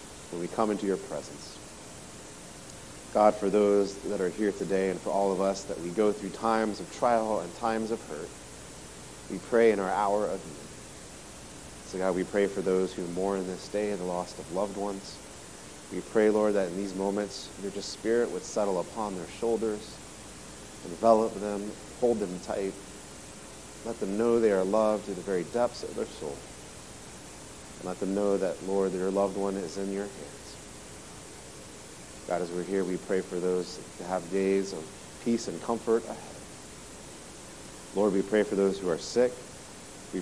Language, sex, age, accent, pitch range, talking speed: English, male, 30-49, American, 90-105 Hz, 185 wpm